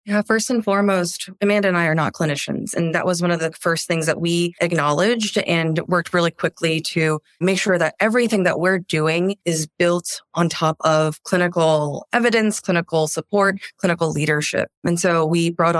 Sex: female